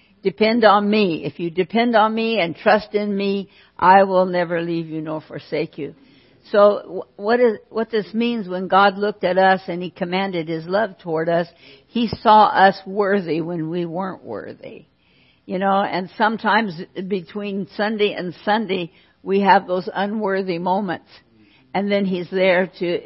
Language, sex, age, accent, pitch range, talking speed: English, female, 60-79, American, 180-210 Hz, 165 wpm